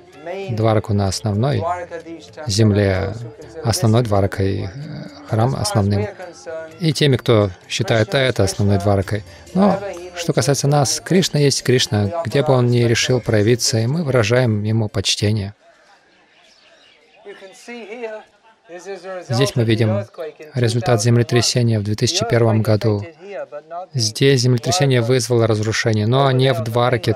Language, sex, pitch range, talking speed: Russian, male, 110-150 Hz, 110 wpm